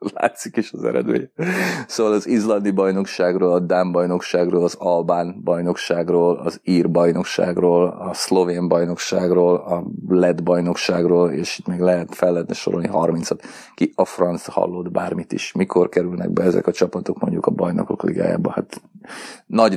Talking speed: 150 wpm